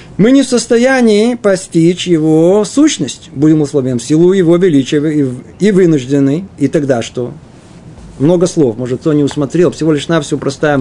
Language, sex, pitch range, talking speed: Russian, male, 140-190 Hz, 155 wpm